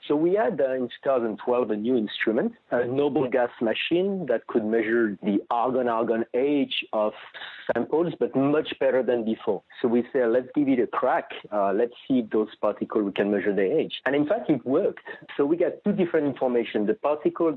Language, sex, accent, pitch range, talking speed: English, male, French, 115-145 Hz, 195 wpm